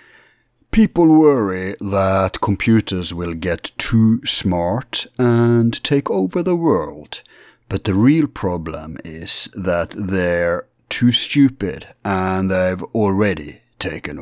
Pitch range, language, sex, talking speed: 90-120 Hz, English, male, 110 wpm